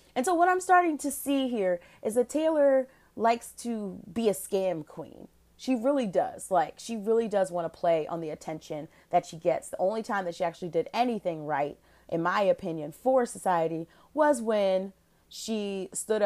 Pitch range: 165-215 Hz